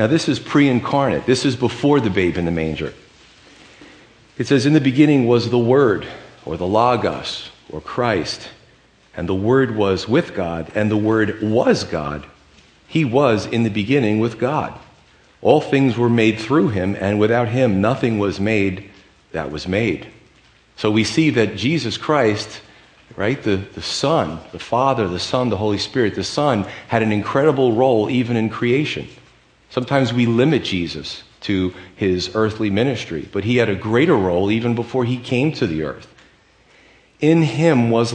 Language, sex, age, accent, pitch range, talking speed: English, male, 40-59, American, 95-125 Hz, 170 wpm